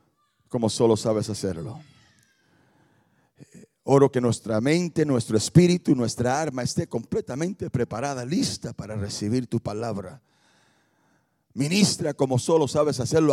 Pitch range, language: 125-195 Hz, Spanish